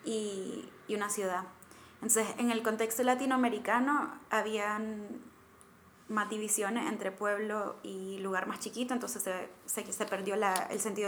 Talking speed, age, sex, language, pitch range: 140 wpm, 20-39, female, Spanish, 195-225 Hz